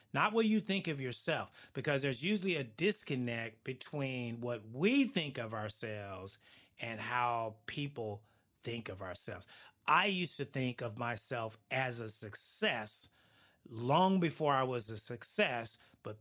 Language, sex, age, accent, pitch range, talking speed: English, male, 30-49, American, 115-145 Hz, 145 wpm